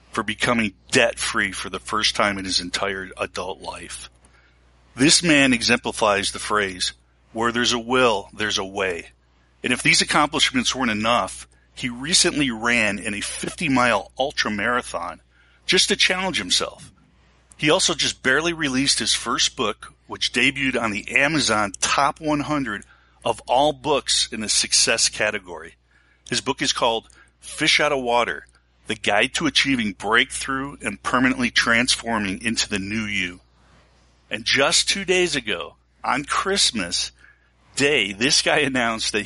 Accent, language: American, English